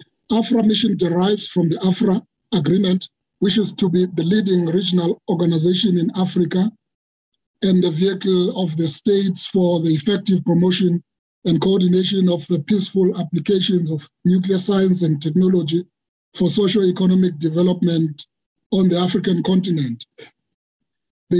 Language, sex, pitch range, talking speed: English, male, 175-200 Hz, 130 wpm